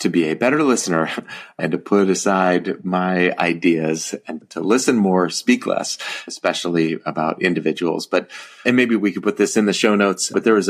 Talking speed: 190 wpm